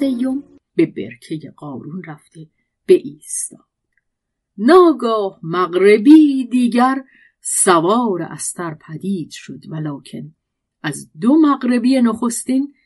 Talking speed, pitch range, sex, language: 85 wpm, 160-265 Hz, female, Persian